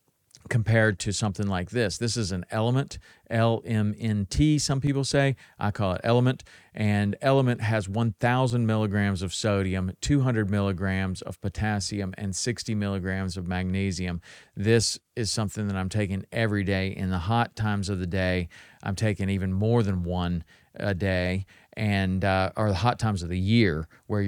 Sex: male